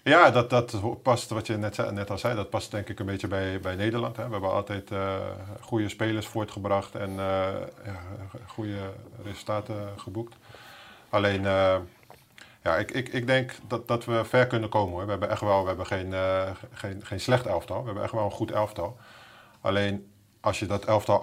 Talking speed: 180 wpm